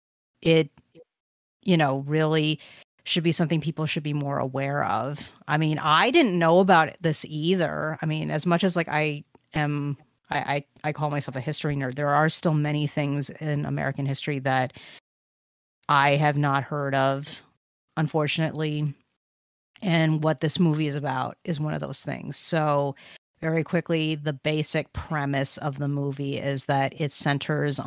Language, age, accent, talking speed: English, 30-49, American, 160 wpm